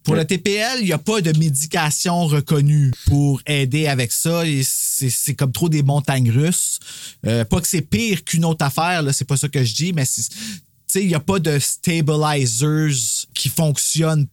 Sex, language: male, French